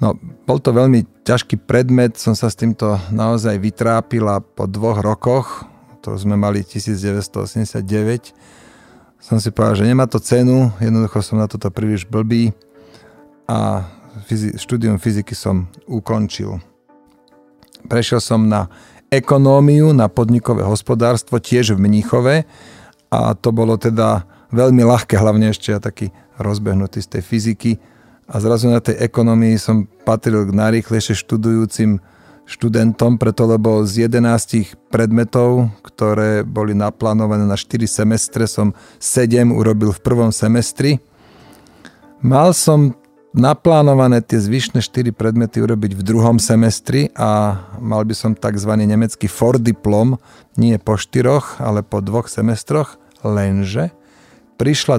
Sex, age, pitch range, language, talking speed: male, 40-59, 105-120 Hz, Slovak, 125 wpm